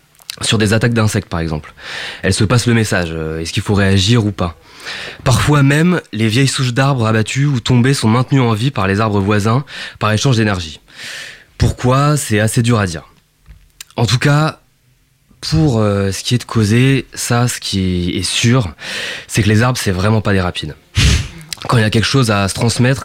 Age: 20-39